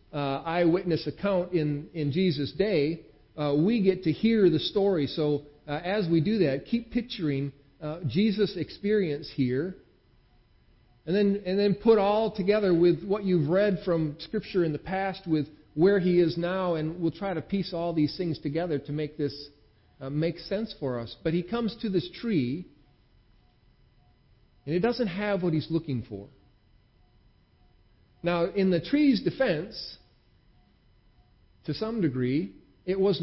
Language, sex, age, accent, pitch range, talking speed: English, male, 50-69, American, 145-200 Hz, 160 wpm